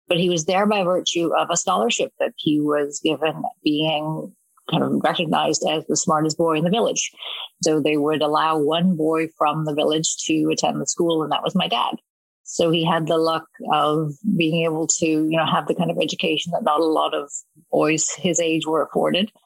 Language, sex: English, female